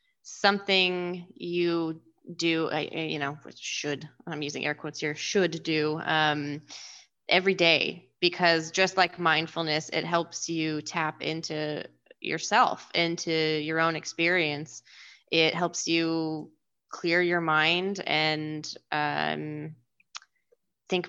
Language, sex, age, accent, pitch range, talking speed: English, female, 20-39, American, 155-180 Hz, 115 wpm